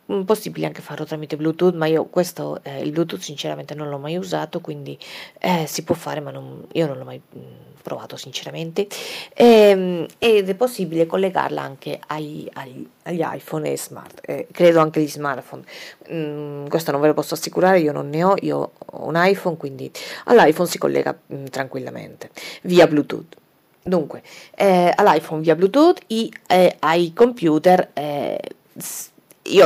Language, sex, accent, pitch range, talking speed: Italian, female, native, 155-205 Hz, 160 wpm